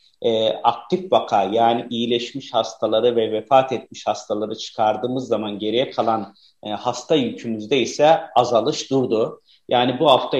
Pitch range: 115-140 Hz